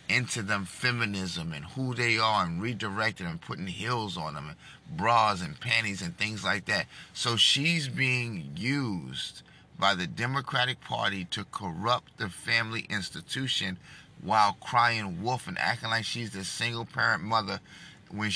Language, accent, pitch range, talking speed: English, American, 100-135 Hz, 155 wpm